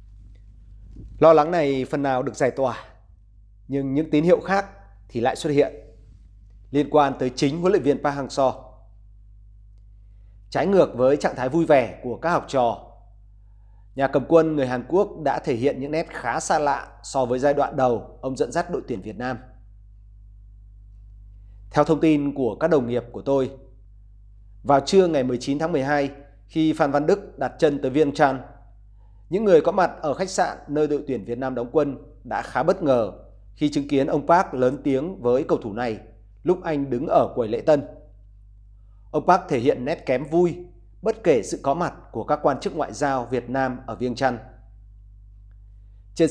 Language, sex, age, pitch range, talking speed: Vietnamese, male, 30-49, 100-150 Hz, 190 wpm